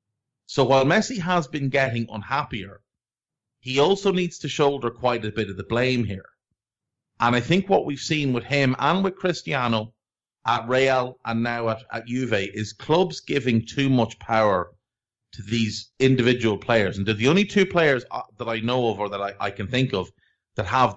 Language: English